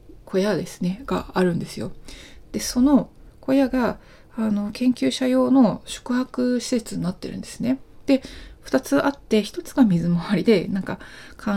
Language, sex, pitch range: Japanese, female, 170-215 Hz